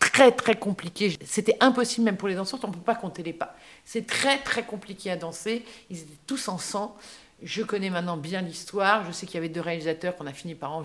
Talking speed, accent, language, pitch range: 240 wpm, French, French, 165-215 Hz